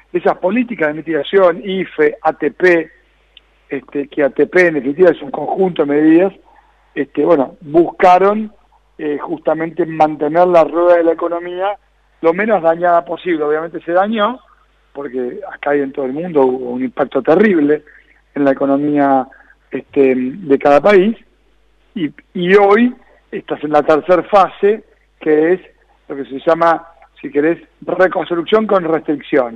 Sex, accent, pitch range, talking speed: male, Argentinian, 145-190 Hz, 145 wpm